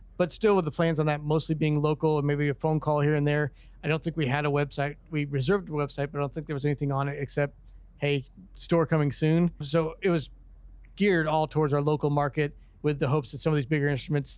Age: 40-59